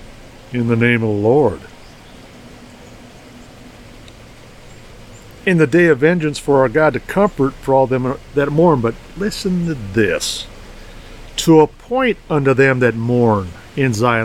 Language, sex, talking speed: English, male, 140 wpm